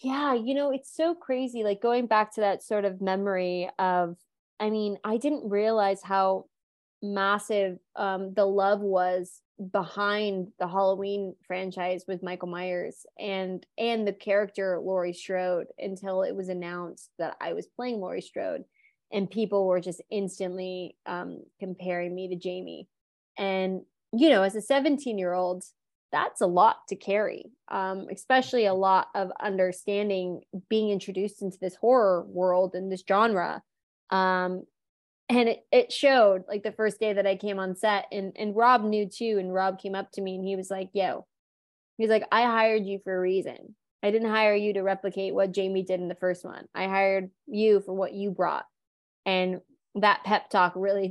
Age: 20-39